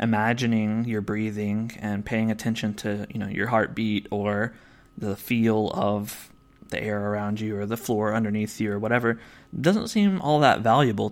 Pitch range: 105-120 Hz